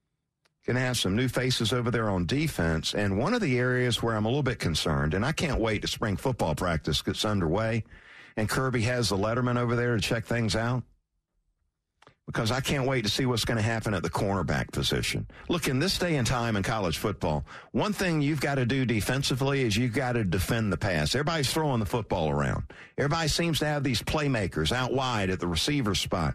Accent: American